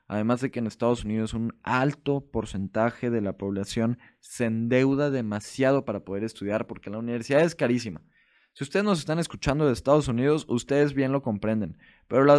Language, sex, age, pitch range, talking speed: Spanish, male, 20-39, 105-135 Hz, 175 wpm